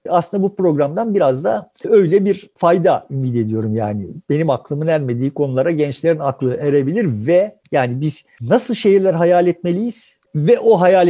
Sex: male